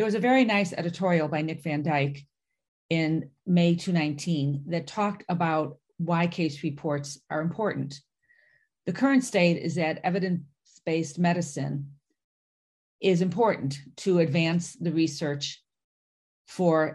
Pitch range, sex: 155-190 Hz, female